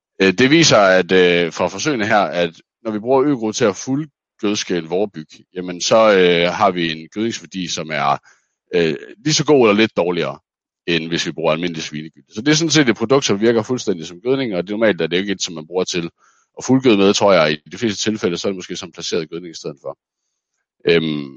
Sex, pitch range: male, 85-110 Hz